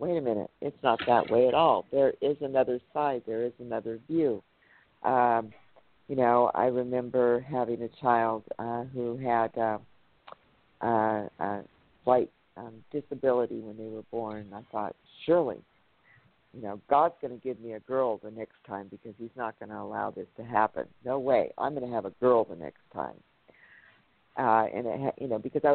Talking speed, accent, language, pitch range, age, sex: 190 wpm, American, English, 115-145 Hz, 50-69, female